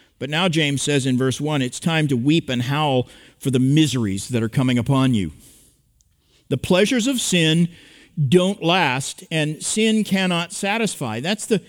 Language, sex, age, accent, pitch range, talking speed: English, male, 50-69, American, 140-205 Hz, 165 wpm